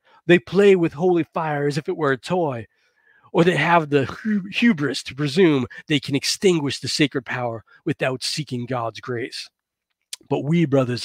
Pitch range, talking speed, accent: 140-195 Hz, 170 wpm, American